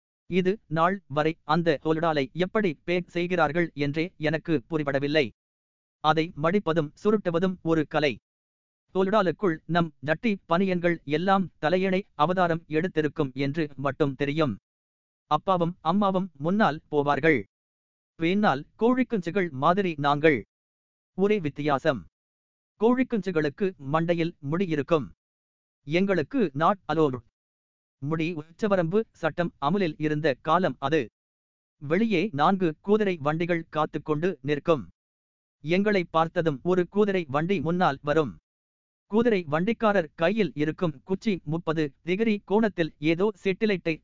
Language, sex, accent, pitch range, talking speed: Tamil, male, native, 145-180 Hz, 100 wpm